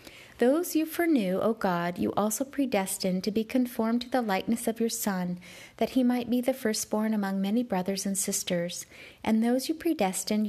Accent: American